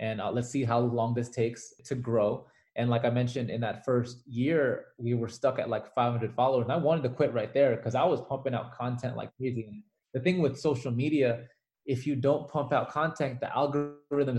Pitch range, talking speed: 120-145 Hz, 220 wpm